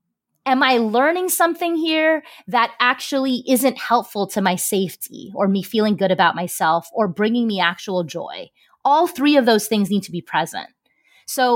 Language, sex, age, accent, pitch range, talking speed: English, female, 30-49, American, 190-245 Hz, 170 wpm